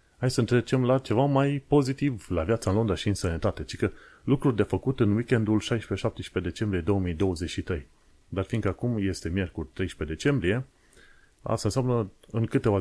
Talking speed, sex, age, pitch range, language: 165 wpm, male, 30-49, 90-115 Hz, Romanian